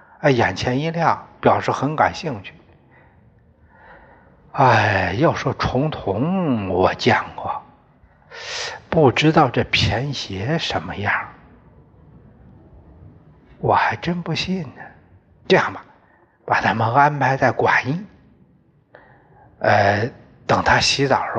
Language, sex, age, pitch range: Chinese, male, 60-79, 110-145 Hz